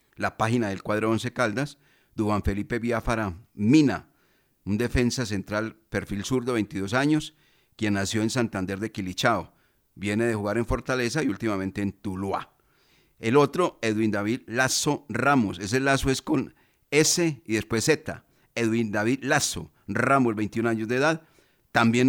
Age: 40-59